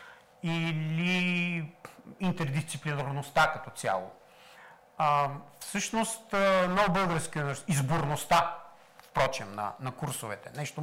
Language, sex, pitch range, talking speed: Bulgarian, male, 150-190 Hz, 80 wpm